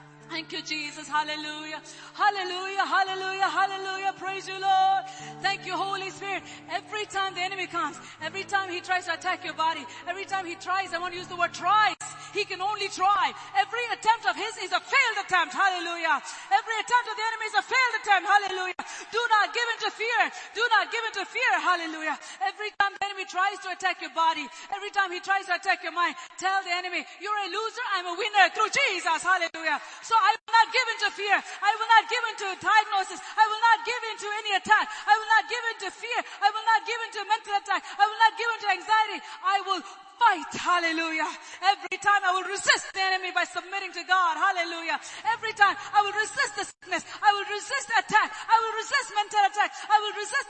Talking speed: 210 wpm